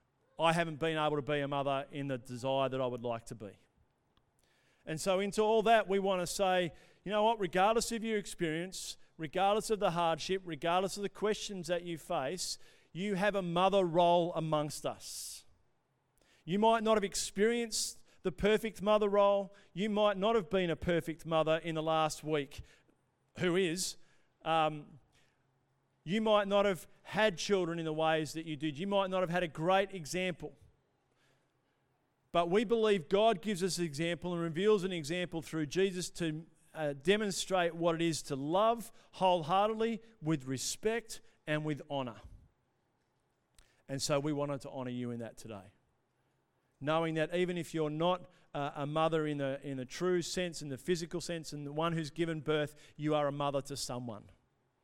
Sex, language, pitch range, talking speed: male, English, 145-190 Hz, 180 wpm